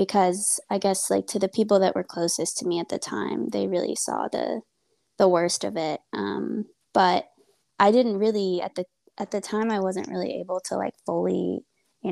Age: 20-39